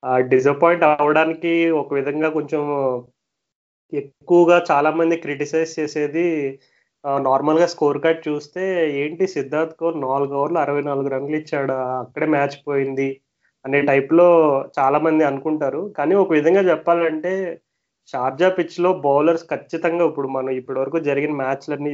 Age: 30-49